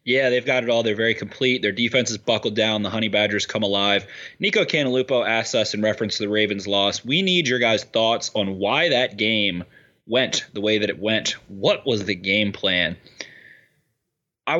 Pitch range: 105-125 Hz